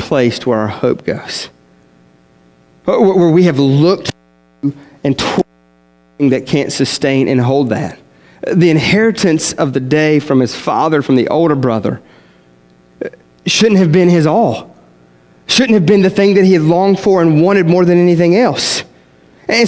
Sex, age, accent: male, 30-49, American